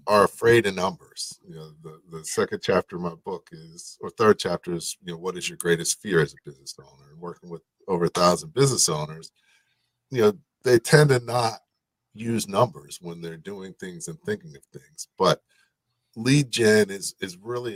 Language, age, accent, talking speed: English, 50-69, American, 200 wpm